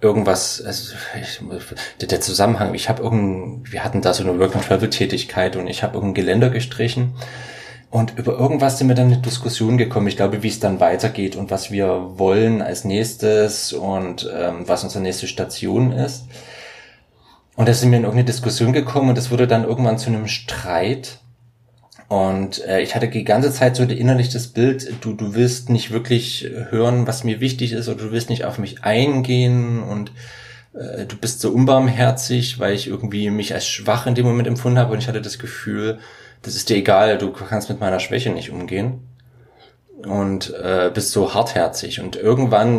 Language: German